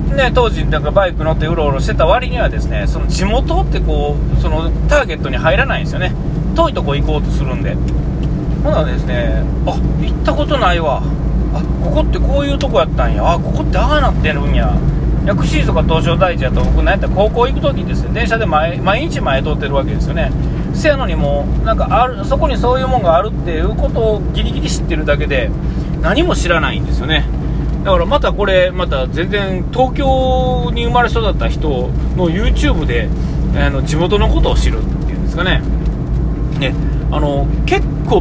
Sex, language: male, Japanese